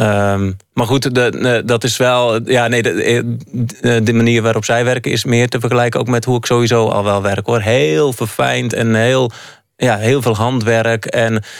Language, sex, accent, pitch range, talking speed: Dutch, male, Dutch, 110-125 Hz, 175 wpm